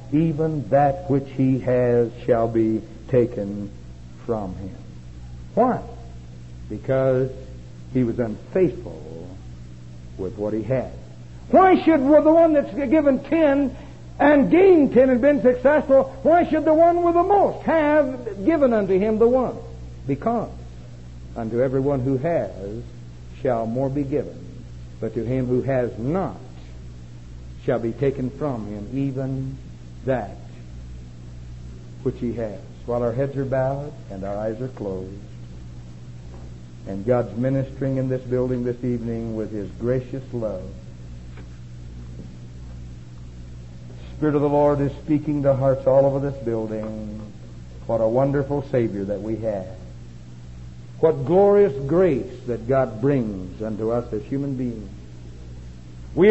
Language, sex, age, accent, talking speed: English, male, 60-79, American, 135 wpm